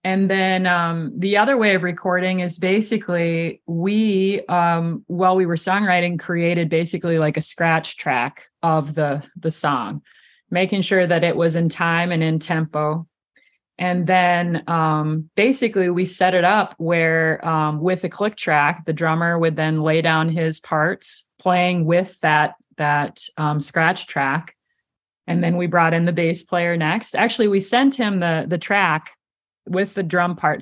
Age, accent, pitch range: 30-49, American, 160-185 Hz